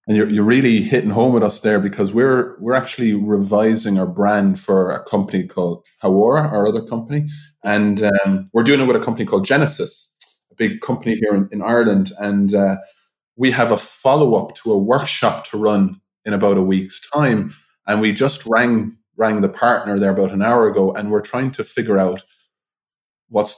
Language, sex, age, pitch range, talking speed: English, male, 20-39, 105-130 Hz, 195 wpm